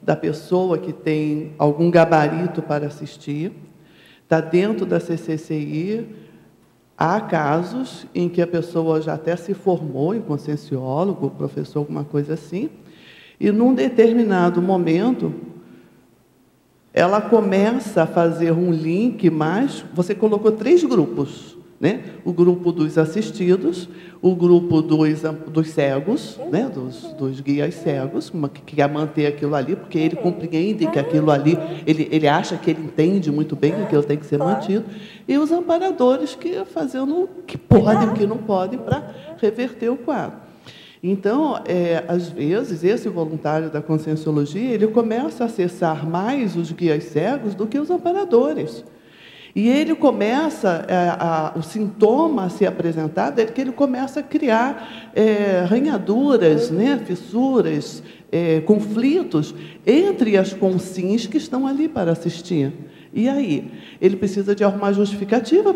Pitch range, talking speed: 160-225 Hz, 140 wpm